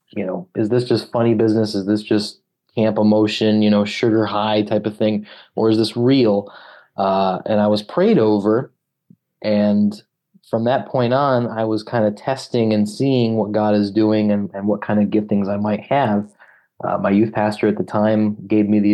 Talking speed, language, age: 205 wpm, English, 30-49